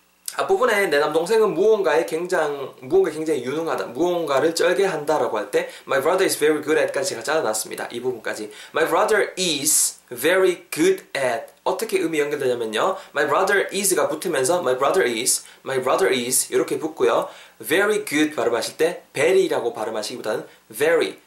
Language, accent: Korean, native